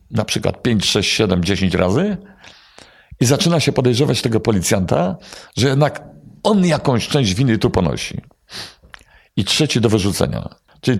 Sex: male